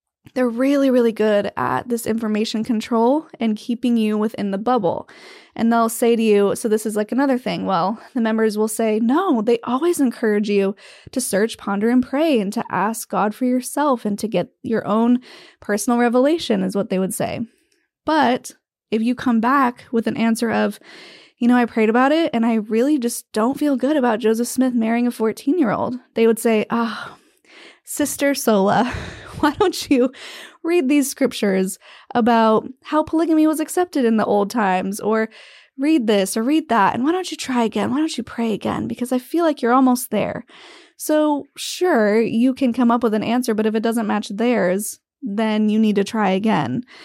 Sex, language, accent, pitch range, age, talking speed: female, English, American, 215-260 Hz, 10-29, 195 wpm